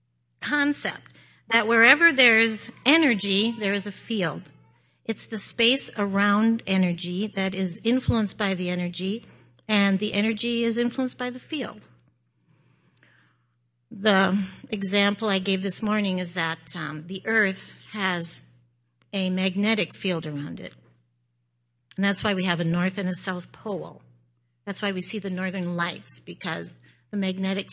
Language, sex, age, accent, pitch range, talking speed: English, female, 50-69, American, 175-235 Hz, 145 wpm